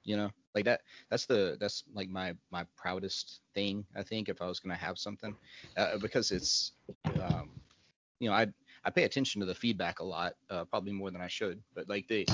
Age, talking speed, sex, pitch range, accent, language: 30-49, 220 wpm, male, 95-105 Hz, American, English